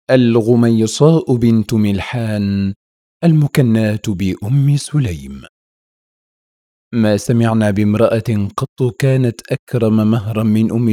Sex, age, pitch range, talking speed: male, 40-59, 95-120 Hz, 80 wpm